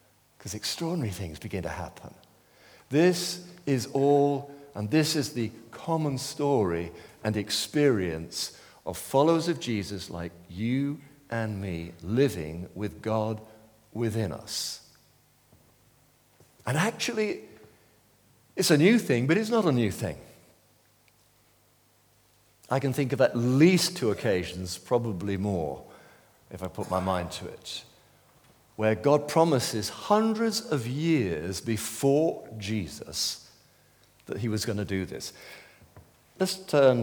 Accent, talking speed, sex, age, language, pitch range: British, 125 wpm, male, 50-69, English, 100-140 Hz